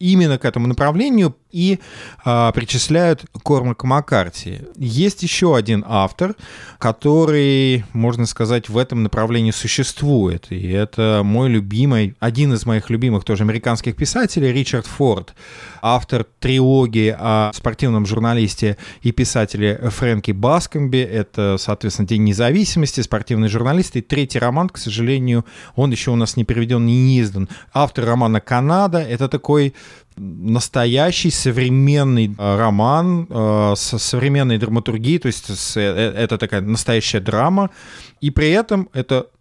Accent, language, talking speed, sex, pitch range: native, Russian, 130 wpm, male, 110-140 Hz